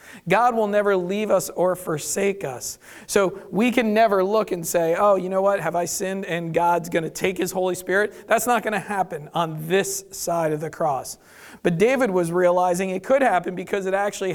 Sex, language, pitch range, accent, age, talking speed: male, English, 165-200 Hz, American, 40-59, 215 wpm